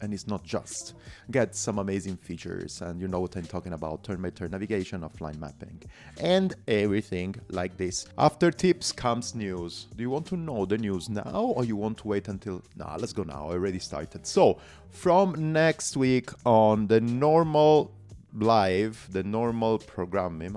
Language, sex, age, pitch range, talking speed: English, male, 30-49, 95-135 Hz, 170 wpm